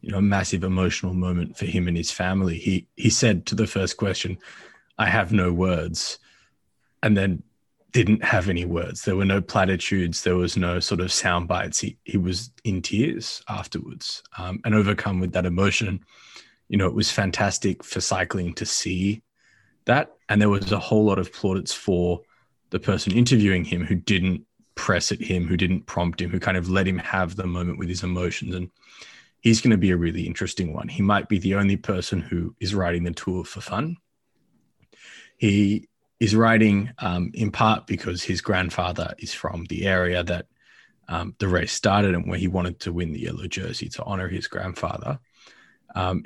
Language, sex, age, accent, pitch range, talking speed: English, male, 20-39, Australian, 90-105 Hz, 190 wpm